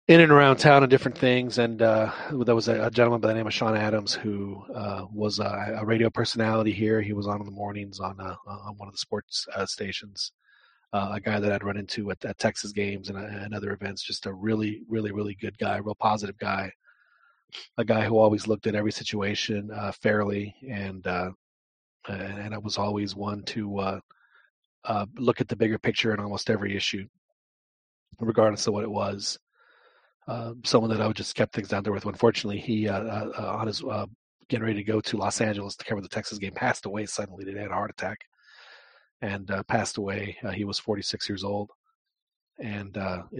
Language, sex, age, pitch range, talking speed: English, male, 30-49, 100-110 Hz, 215 wpm